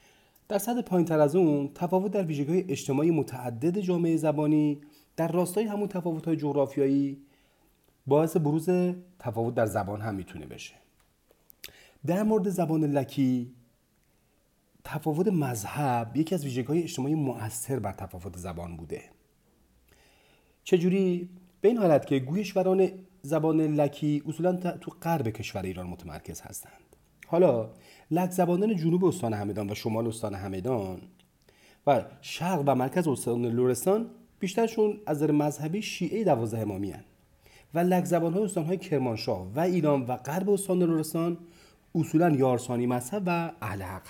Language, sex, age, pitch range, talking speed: Persian, male, 40-59, 120-175 Hz, 130 wpm